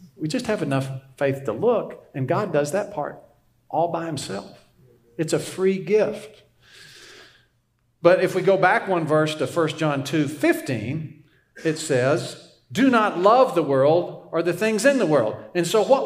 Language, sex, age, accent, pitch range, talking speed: English, male, 50-69, American, 130-205 Hz, 170 wpm